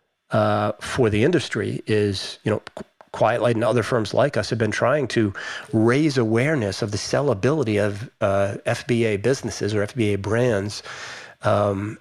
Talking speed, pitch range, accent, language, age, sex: 155 wpm, 105-120 Hz, American, English, 40-59, male